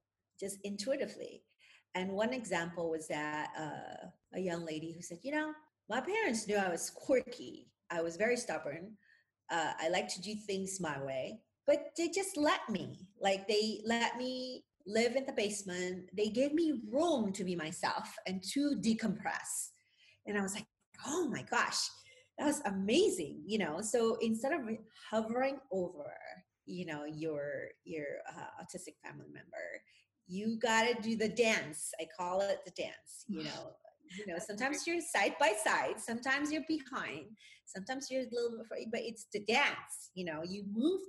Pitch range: 175-255 Hz